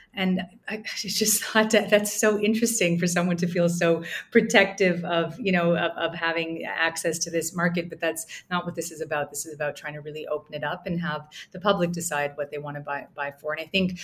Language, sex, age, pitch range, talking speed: English, female, 30-49, 155-185 Hz, 235 wpm